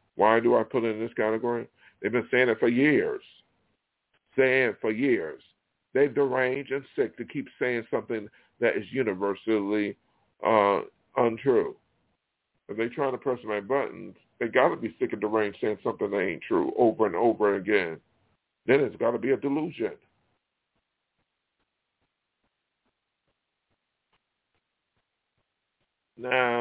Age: 50-69